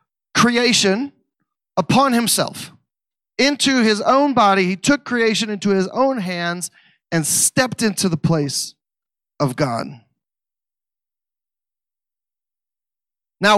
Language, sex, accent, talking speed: English, male, American, 95 wpm